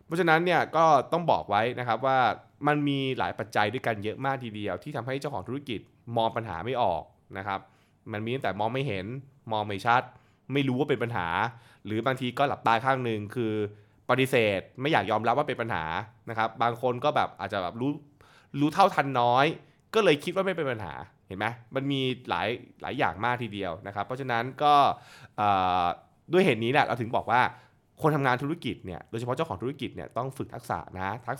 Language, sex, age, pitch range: Thai, male, 20-39, 105-135 Hz